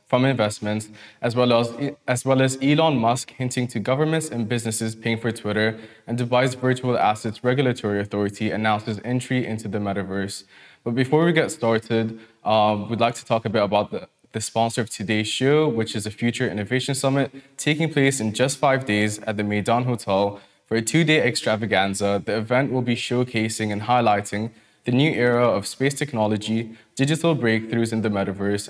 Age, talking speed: 20-39, 185 wpm